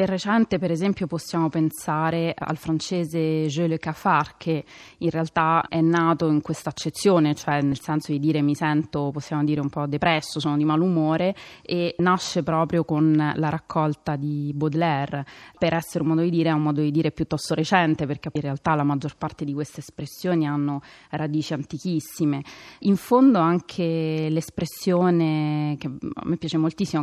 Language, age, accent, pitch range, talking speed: Italian, 30-49, native, 150-170 Hz, 170 wpm